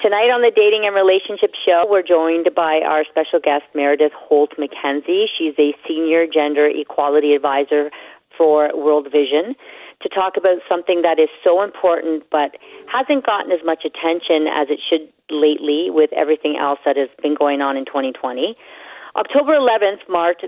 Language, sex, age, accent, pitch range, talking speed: English, female, 40-59, American, 145-190 Hz, 160 wpm